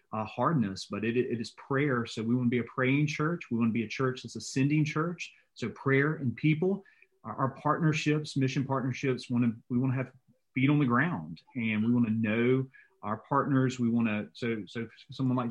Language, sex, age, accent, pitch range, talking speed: English, male, 30-49, American, 115-135 Hz, 225 wpm